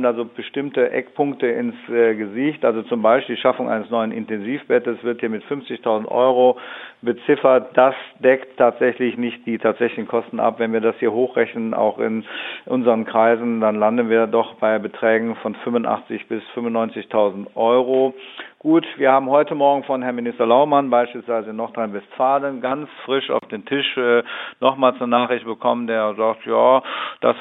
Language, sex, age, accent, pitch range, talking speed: German, male, 50-69, German, 115-135 Hz, 160 wpm